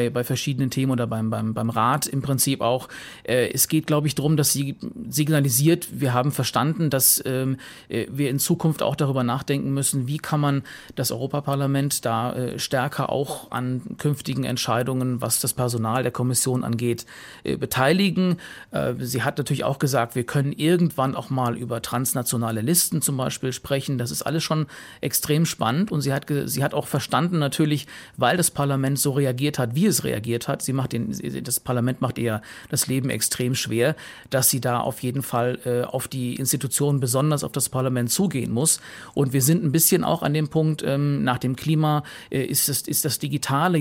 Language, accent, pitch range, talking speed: German, German, 125-145 Hz, 180 wpm